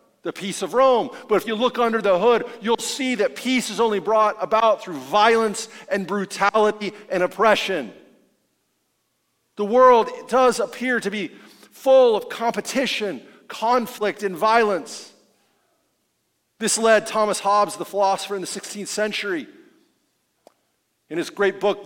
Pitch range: 195-245 Hz